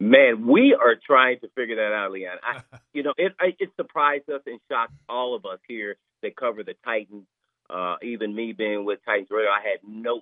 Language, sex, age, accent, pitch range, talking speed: English, male, 40-59, American, 120-180 Hz, 210 wpm